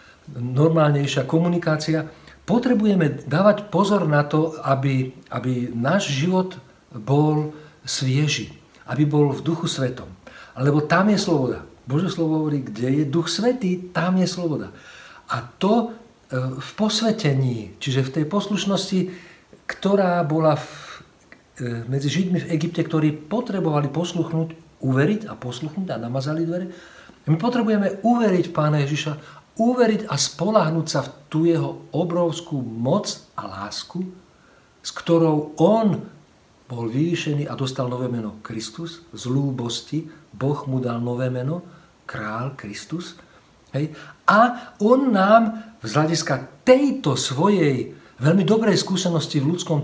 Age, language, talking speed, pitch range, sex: 50-69, Slovak, 125 wpm, 135-185 Hz, male